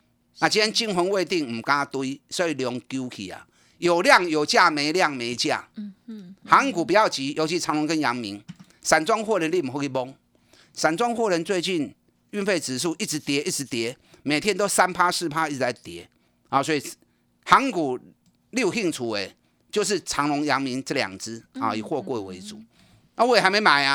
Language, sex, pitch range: Chinese, male, 130-195 Hz